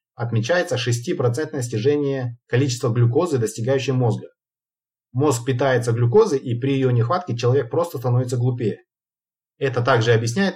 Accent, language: native, Russian